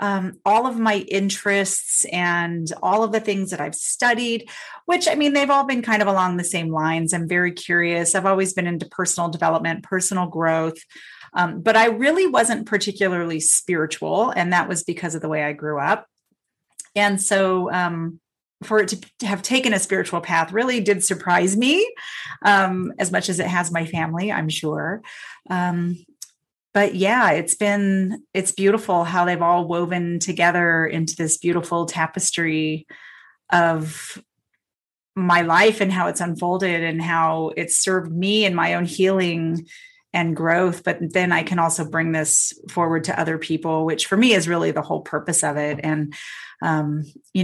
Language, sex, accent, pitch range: English, female, American, 165-200 Hz